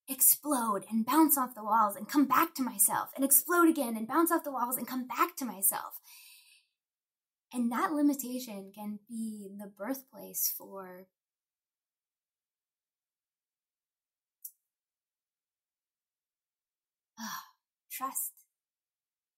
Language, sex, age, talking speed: English, female, 10-29, 100 wpm